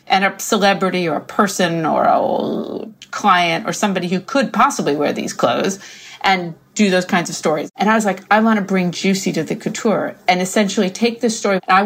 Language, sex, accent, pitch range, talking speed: English, female, American, 185-240 Hz, 210 wpm